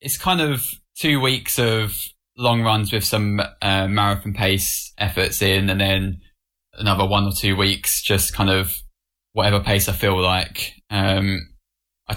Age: 10-29